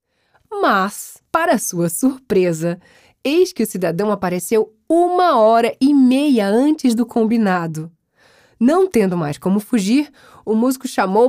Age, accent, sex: 20-39, Brazilian, female